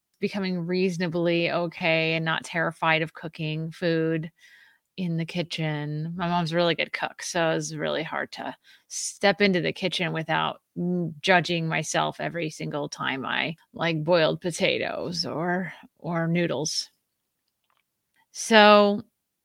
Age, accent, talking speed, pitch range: 30-49, American, 130 wpm, 165-220 Hz